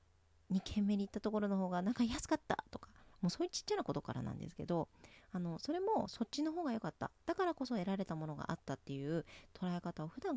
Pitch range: 140-205 Hz